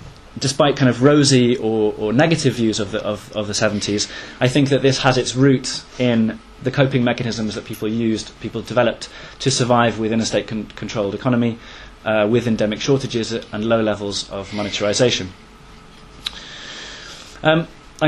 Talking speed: 155 wpm